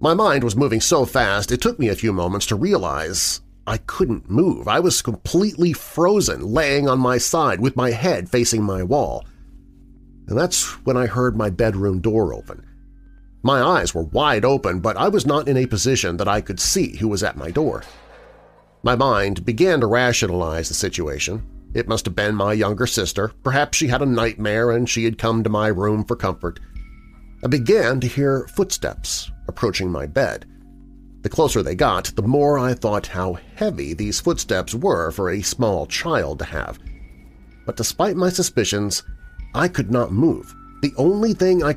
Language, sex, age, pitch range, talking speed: English, male, 40-59, 95-130 Hz, 180 wpm